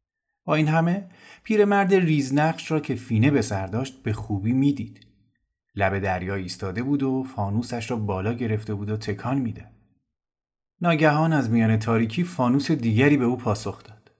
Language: Persian